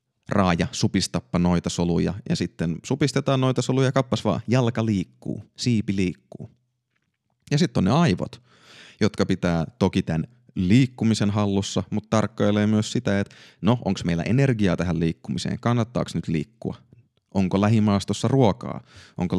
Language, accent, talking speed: Finnish, native, 135 wpm